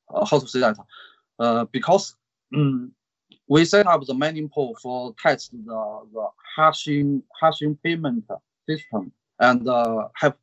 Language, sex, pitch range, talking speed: English, male, 120-155 Hz, 140 wpm